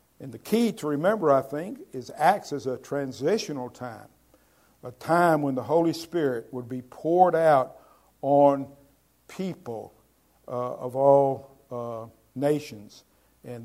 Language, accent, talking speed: English, American, 135 wpm